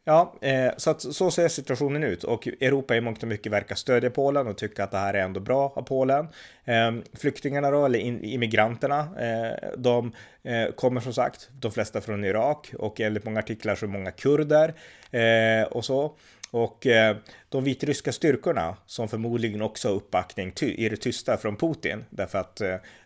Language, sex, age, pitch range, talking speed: Swedish, male, 30-49, 110-130 Hz, 195 wpm